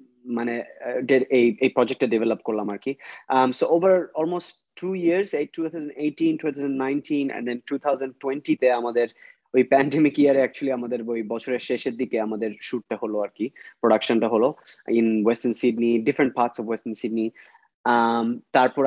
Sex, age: male, 30-49